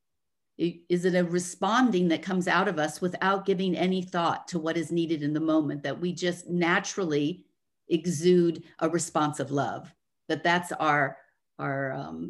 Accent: American